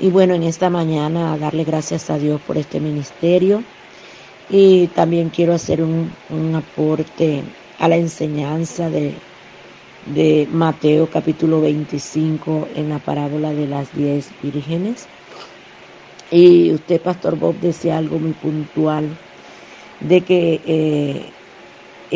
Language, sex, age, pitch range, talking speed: English, female, 50-69, 145-180 Hz, 125 wpm